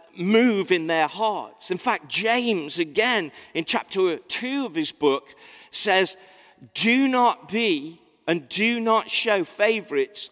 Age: 50-69